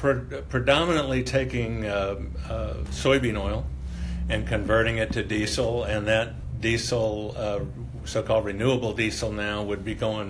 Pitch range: 95-115 Hz